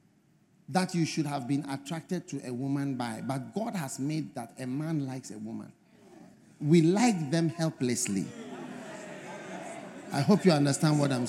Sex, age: male, 50-69